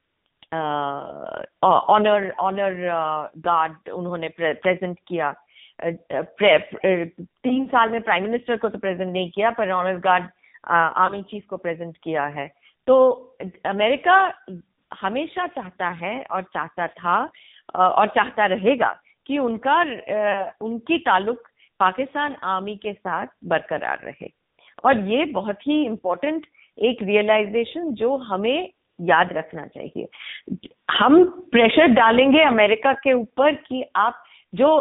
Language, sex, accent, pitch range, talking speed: Hindi, female, native, 185-250 Hz, 115 wpm